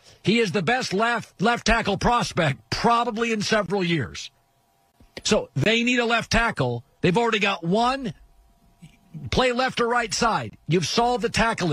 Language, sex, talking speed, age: English, male, 160 wpm, 50-69